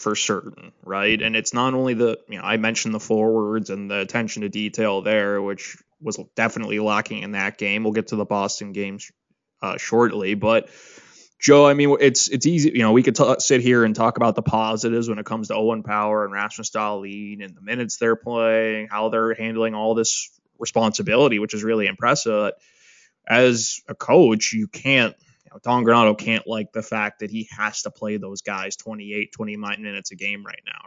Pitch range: 105-120 Hz